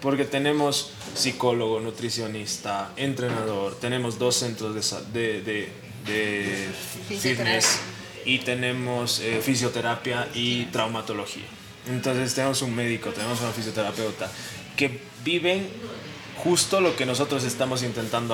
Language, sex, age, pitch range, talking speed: English, male, 20-39, 110-130 Hz, 110 wpm